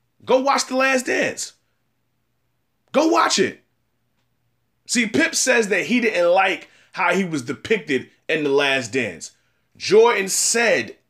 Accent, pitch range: American, 160-250 Hz